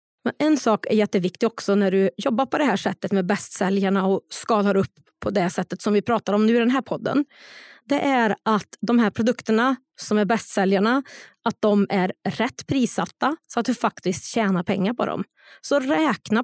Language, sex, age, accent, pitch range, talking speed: Swedish, female, 30-49, native, 200-265 Hz, 195 wpm